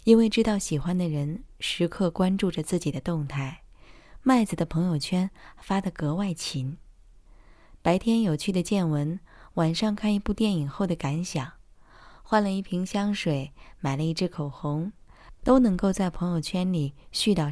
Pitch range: 145-200 Hz